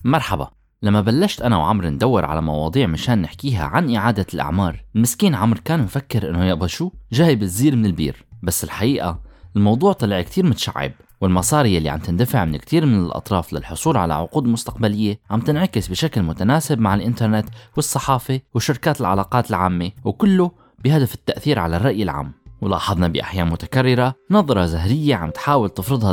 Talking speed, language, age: 150 wpm, Arabic, 20-39